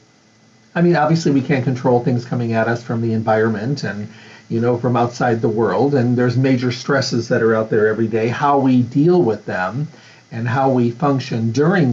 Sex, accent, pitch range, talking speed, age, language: male, American, 115-145 Hz, 200 wpm, 50-69, English